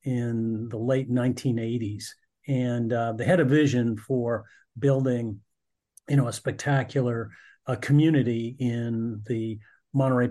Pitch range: 115-135 Hz